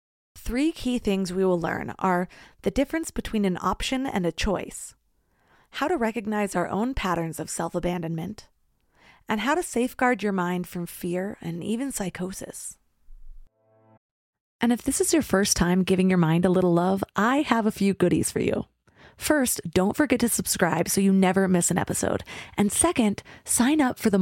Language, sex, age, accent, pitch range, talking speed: English, female, 30-49, American, 175-225 Hz, 175 wpm